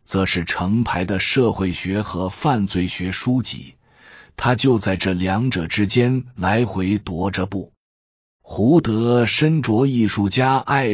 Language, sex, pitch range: Chinese, male, 90-125 Hz